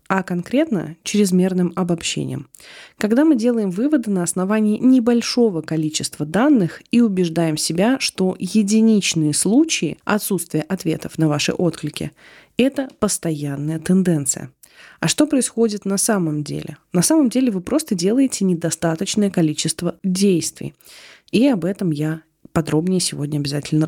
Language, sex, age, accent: Russian, female, 20-39, native